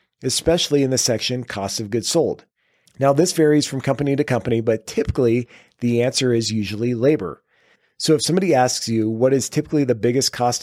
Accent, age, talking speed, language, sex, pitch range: American, 40-59, 185 wpm, English, male, 115-145 Hz